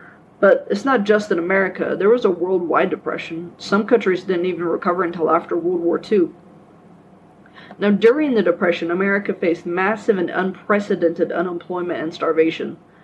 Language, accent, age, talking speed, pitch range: English, American, 20-39, 150 wpm, 170-205 Hz